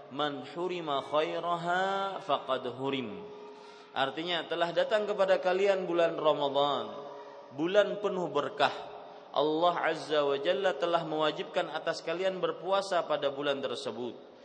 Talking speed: 100 wpm